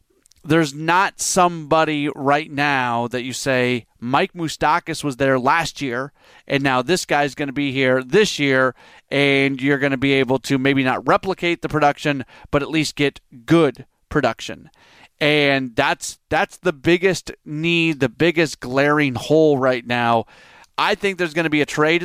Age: 30-49